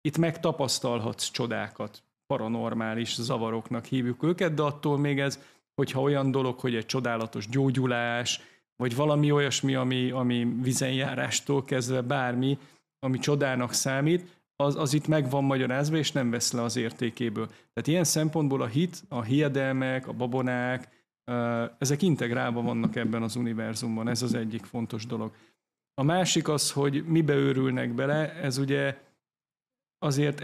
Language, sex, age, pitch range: Hungarian, male, 30-49, 120-145 Hz